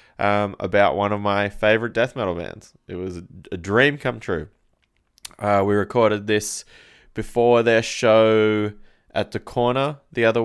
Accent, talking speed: Australian, 160 wpm